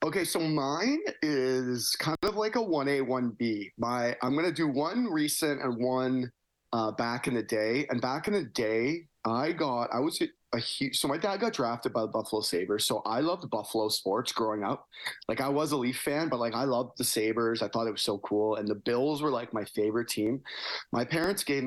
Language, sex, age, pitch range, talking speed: English, male, 30-49, 110-140 Hz, 220 wpm